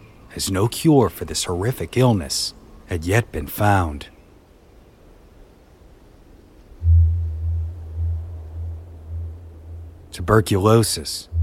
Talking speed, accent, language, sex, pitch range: 65 wpm, American, English, male, 85-105 Hz